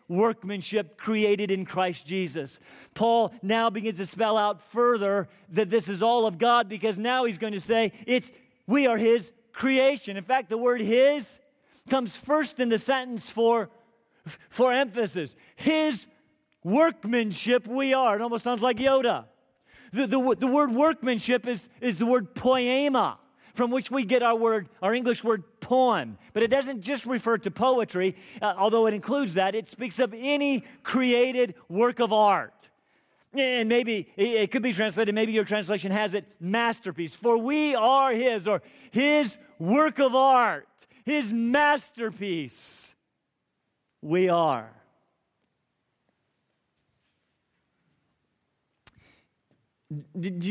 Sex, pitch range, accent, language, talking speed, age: male, 200-255 Hz, American, English, 140 wpm, 40-59